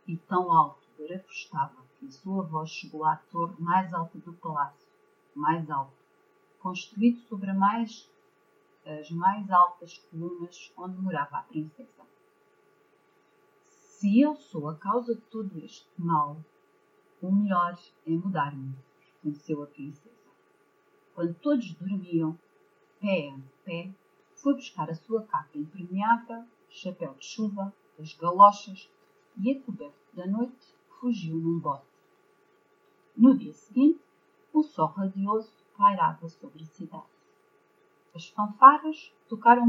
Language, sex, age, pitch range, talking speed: Portuguese, female, 40-59, 170-280 Hz, 120 wpm